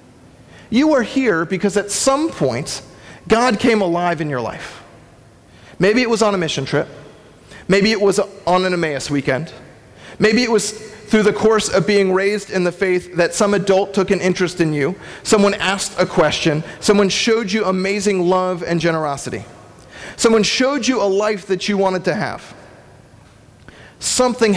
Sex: male